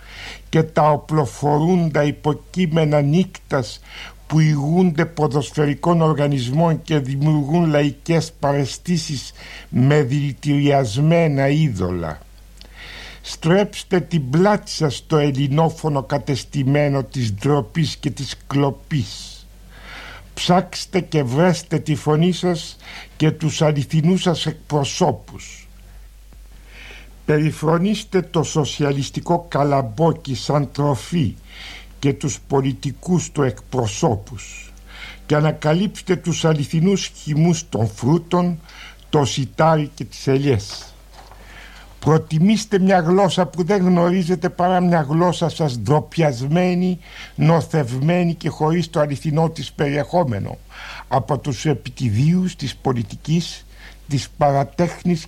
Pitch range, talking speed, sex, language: 135-170 Hz, 95 wpm, male, Greek